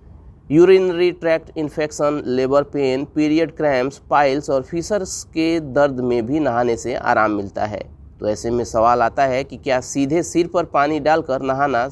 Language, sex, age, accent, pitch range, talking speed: Hindi, male, 30-49, native, 110-145 Hz, 165 wpm